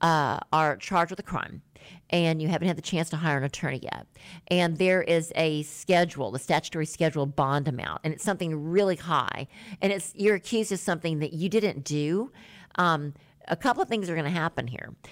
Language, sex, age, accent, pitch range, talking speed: English, female, 50-69, American, 145-180 Hz, 195 wpm